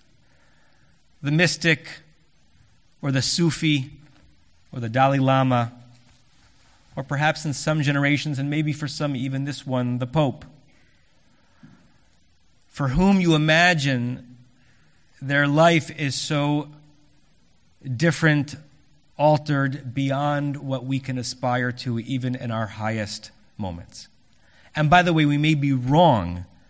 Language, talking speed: English, 115 wpm